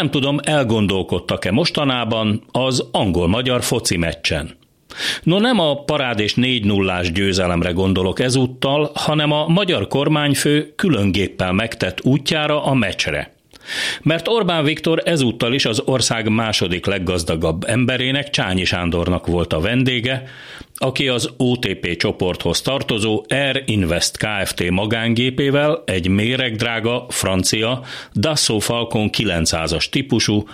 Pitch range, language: 95-135 Hz, Hungarian